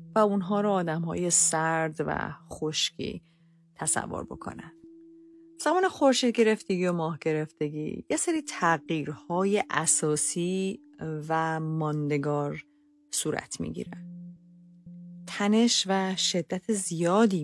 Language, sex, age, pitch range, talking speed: Persian, female, 40-59, 160-210 Hz, 95 wpm